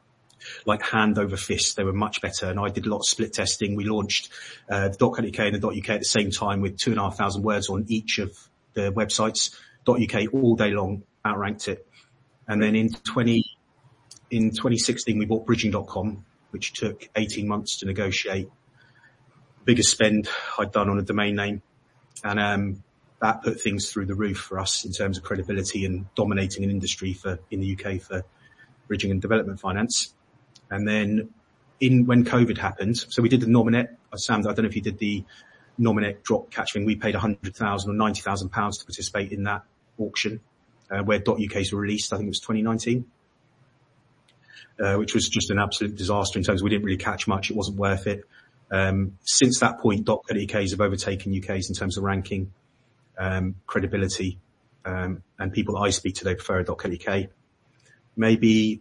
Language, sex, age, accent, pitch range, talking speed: English, male, 30-49, British, 100-115 Hz, 195 wpm